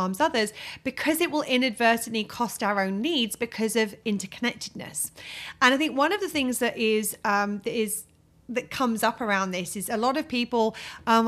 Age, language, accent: 30-49, English, British